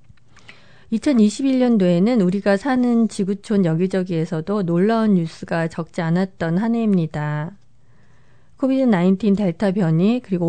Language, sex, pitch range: Korean, female, 170-210 Hz